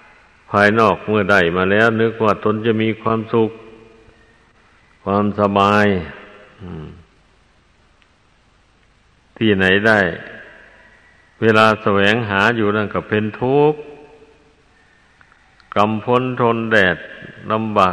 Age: 60-79